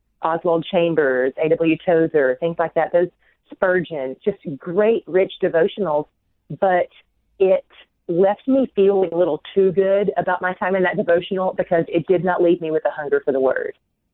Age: 30-49